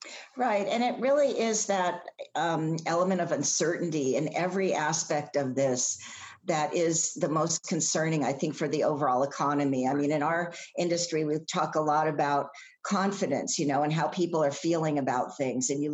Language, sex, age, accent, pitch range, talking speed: English, female, 50-69, American, 145-170 Hz, 180 wpm